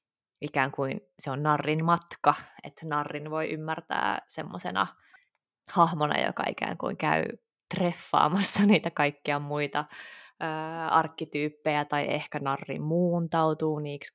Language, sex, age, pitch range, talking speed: Finnish, female, 20-39, 145-175 Hz, 115 wpm